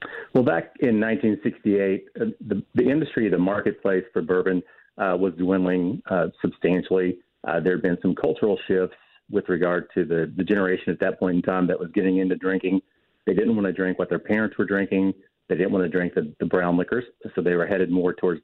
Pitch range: 90-105 Hz